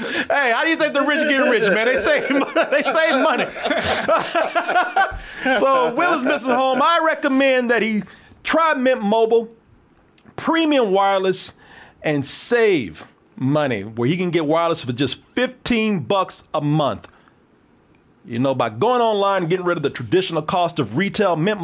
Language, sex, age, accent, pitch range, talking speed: English, male, 40-59, American, 140-205 Hz, 160 wpm